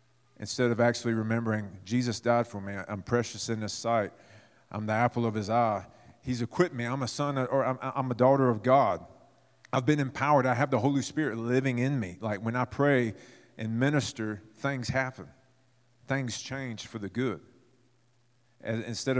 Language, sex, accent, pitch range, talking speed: English, male, American, 110-130 Hz, 175 wpm